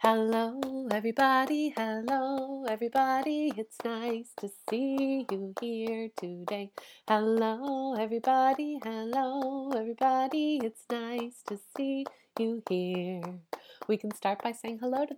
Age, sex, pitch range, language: 30-49, female, 210-270 Hz, English